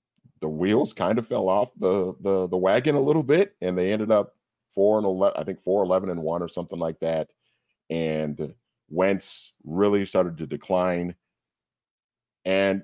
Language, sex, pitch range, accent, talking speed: English, male, 80-100 Hz, American, 175 wpm